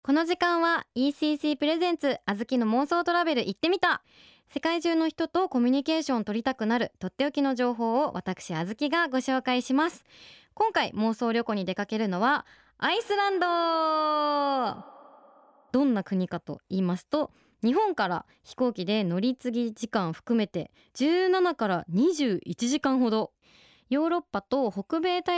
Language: Japanese